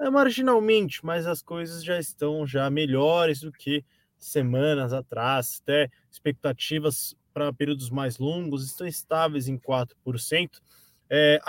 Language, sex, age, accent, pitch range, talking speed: Portuguese, male, 20-39, Brazilian, 135-175 Hz, 110 wpm